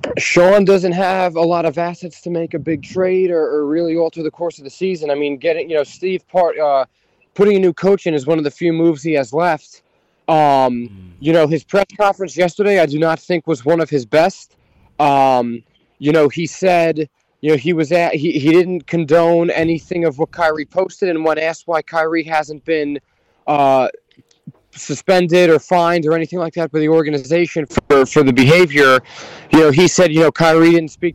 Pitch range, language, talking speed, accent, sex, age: 150-175 Hz, English, 210 wpm, American, male, 20-39